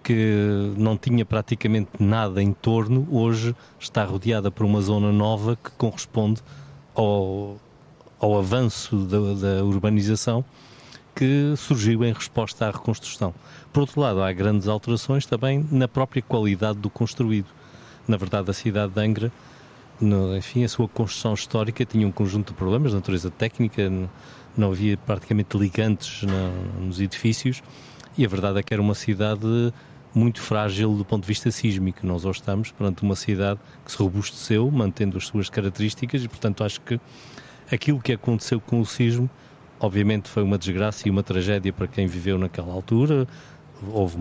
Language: Portuguese